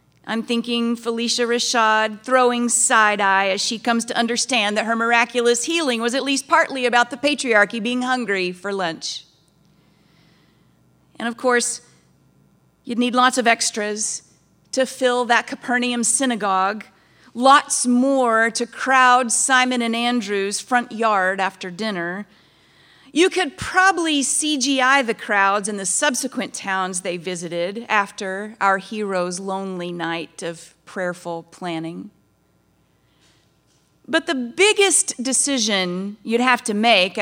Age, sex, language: 40-59, female, English